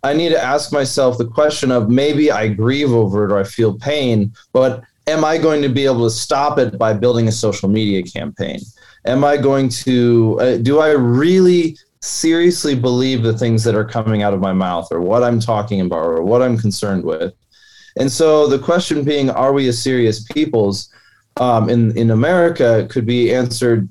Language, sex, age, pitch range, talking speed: English, male, 20-39, 110-135 Hz, 200 wpm